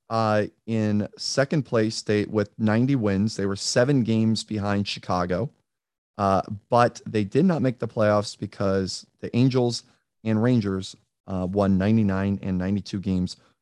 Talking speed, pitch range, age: 155 wpm, 100-120 Hz, 30-49